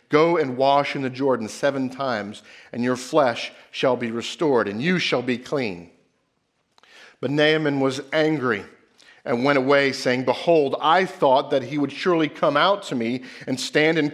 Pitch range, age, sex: 125-160 Hz, 50-69, male